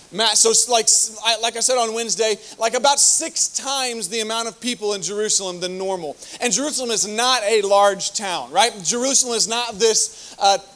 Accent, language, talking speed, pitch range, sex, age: American, English, 185 wpm, 200-235 Hz, male, 30-49